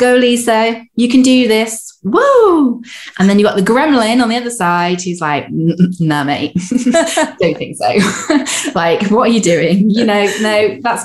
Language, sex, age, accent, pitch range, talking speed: English, female, 20-39, British, 170-225 Hz, 180 wpm